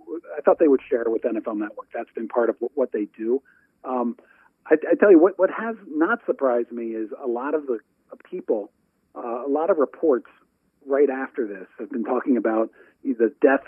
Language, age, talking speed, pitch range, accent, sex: English, 40-59, 205 wpm, 120-190 Hz, American, male